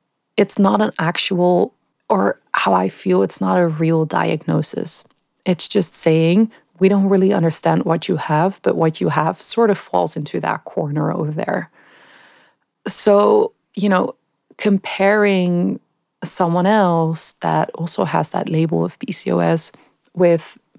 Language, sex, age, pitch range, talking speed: English, female, 30-49, 160-195 Hz, 140 wpm